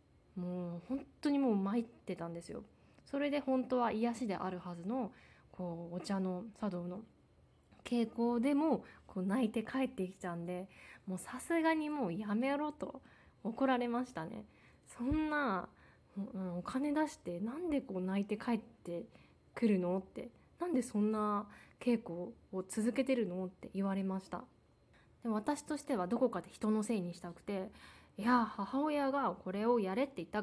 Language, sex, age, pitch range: Japanese, female, 20-39, 185-250 Hz